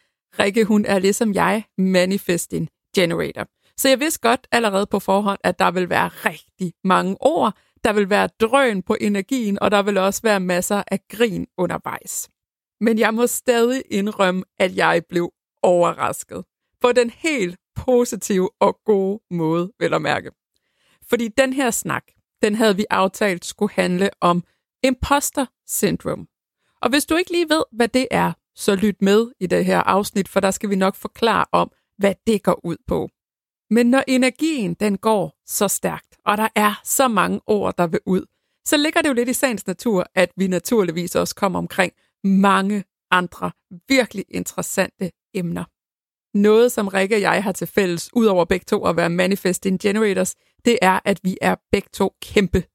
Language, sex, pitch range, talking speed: Danish, female, 185-230 Hz, 175 wpm